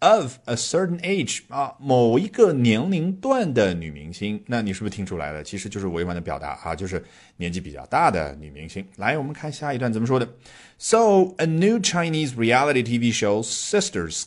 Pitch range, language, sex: 90-130 Hz, Chinese, male